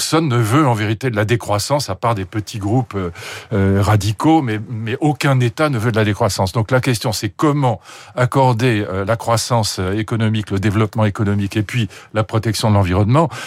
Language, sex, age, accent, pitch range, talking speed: French, male, 50-69, French, 105-135 Hz, 190 wpm